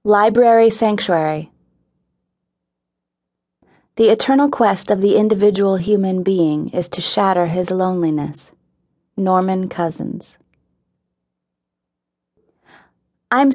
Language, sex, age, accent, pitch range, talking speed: English, female, 30-49, American, 165-220 Hz, 80 wpm